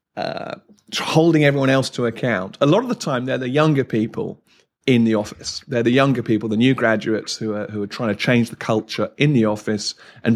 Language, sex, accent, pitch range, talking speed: English, male, British, 110-145 Hz, 215 wpm